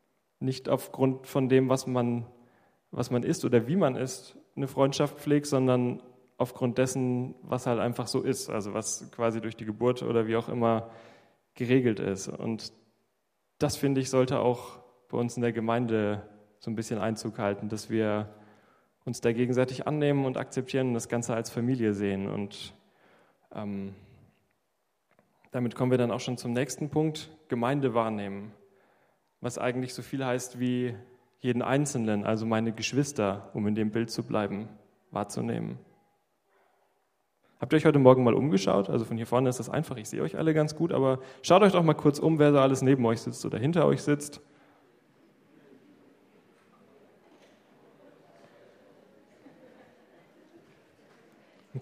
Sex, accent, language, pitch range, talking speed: male, German, German, 110-130 Hz, 155 wpm